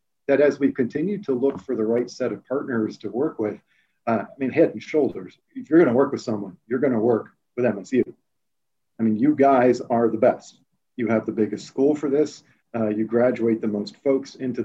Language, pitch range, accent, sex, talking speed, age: English, 115-140 Hz, American, male, 215 wpm, 50-69